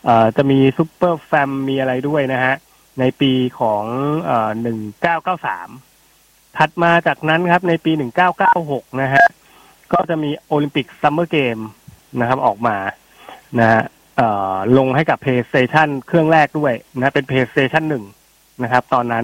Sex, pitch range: male, 130-160 Hz